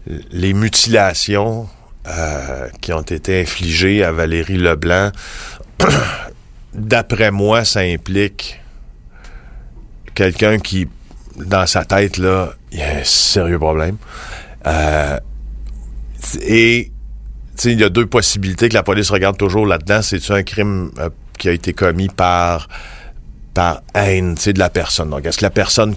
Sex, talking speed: male, 135 wpm